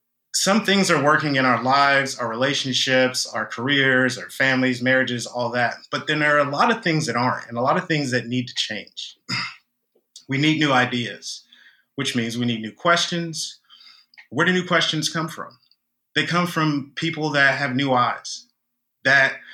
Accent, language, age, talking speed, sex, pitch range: American, English, 30-49, 185 wpm, male, 120-140 Hz